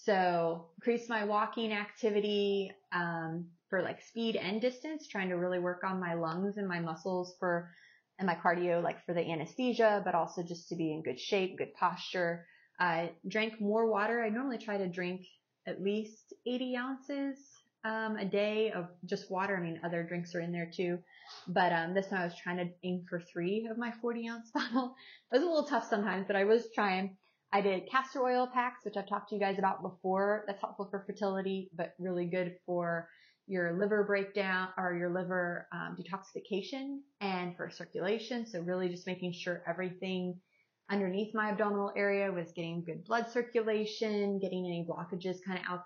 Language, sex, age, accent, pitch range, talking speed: English, female, 20-39, American, 175-210 Hz, 190 wpm